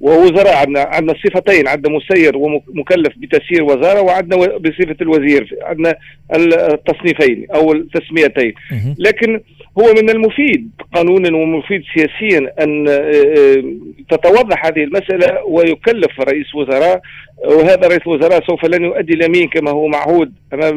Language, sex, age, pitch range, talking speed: Arabic, male, 40-59, 150-190 Hz, 120 wpm